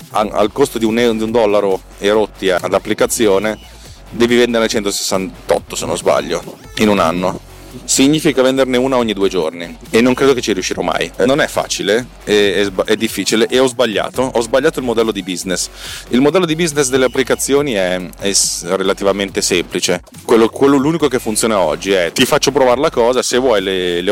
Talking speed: 180 wpm